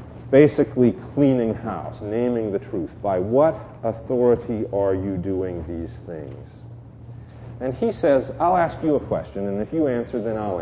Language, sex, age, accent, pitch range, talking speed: English, male, 40-59, American, 105-130 Hz, 160 wpm